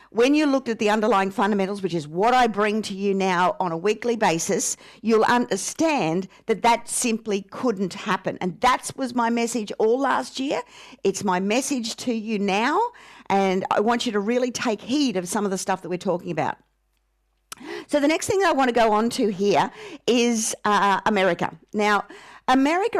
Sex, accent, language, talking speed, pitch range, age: female, Australian, English, 190 wpm, 195-240 Hz, 50-69